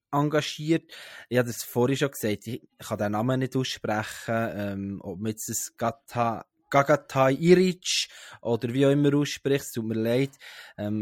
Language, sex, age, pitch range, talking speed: German, male, 20-39, 110-145 Hz, 140 wpm